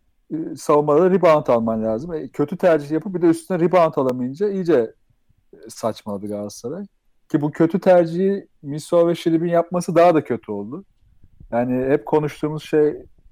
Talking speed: 145 wpm